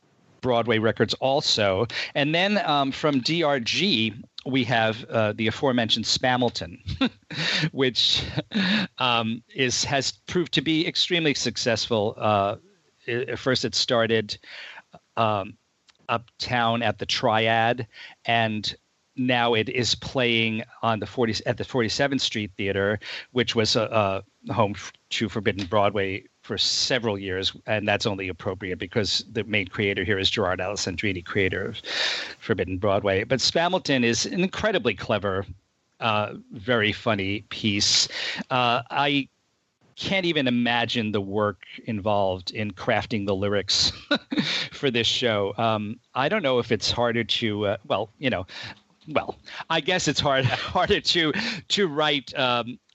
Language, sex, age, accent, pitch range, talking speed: English, male, 40-59, American, 105-135 Hz, 135 wpm